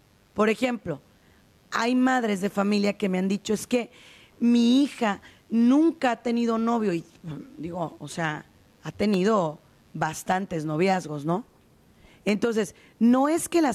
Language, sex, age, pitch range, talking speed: Spanish, female, 40-59, 170-245 Hz, 140 wpm